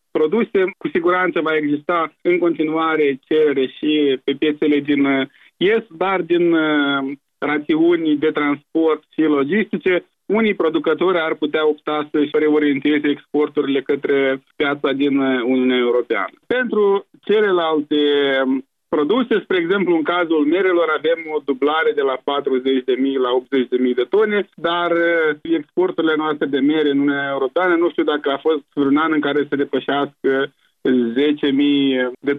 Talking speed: 135 wpm